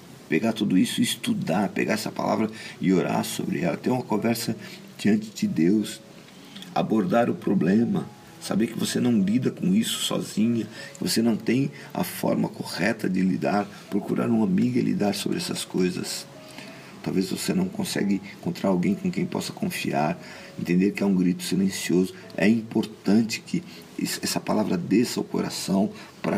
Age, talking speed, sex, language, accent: 50-69, 160 wpm, male, Portuguese, Brazilian